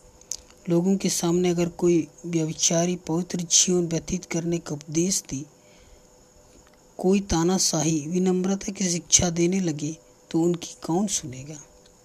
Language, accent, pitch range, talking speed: Hindi, native, 155-180 Hz, 120 wpm